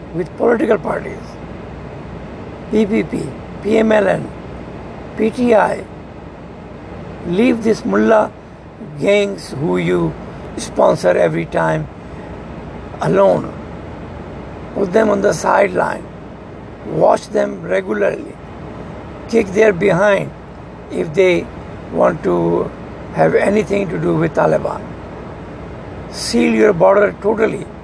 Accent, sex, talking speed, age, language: Indian, male, 90 wpm, 60-79, English